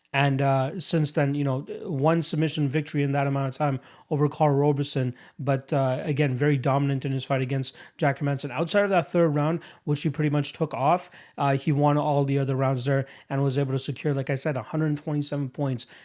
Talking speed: 215 wpm